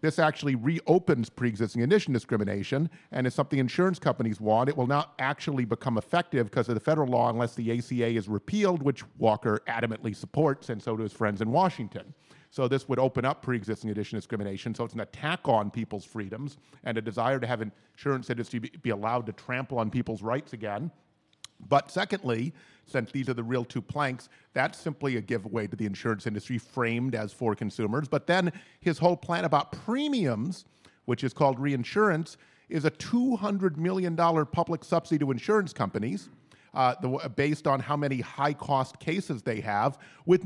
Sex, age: male, 50-69